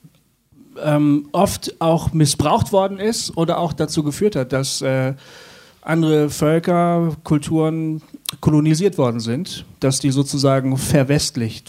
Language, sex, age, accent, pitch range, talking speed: German, male, 40-59, German, 130-155 Hz, 120 wpm